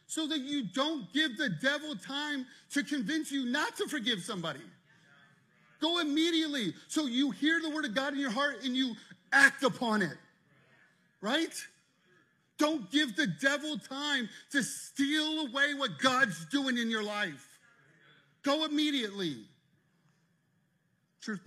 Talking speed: 140 wpm